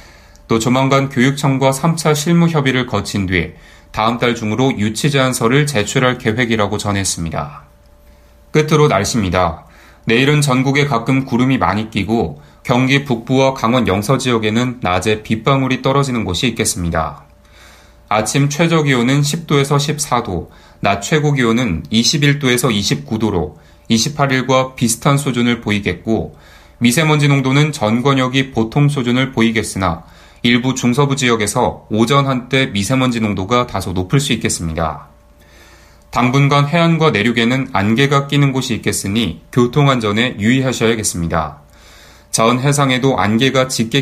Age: 30-49